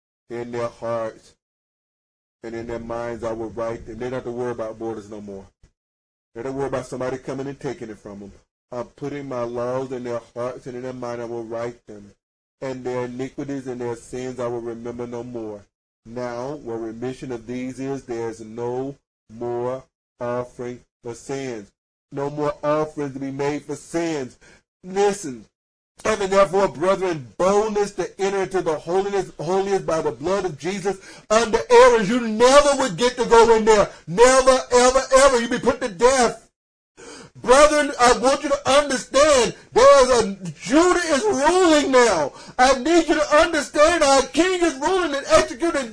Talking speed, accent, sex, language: 180 wpm, American, male, English